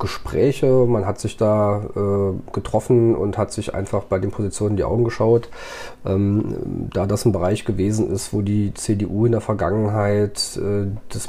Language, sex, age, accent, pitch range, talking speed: German, male, 40-59, German, 95-115 Hz, 175 wpm